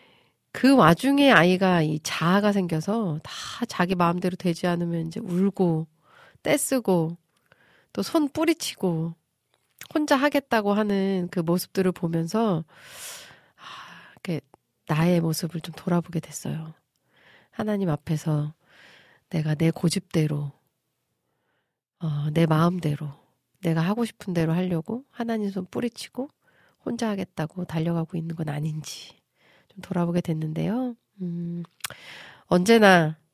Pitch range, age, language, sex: 160-205 Hz, 40-59, Korean, female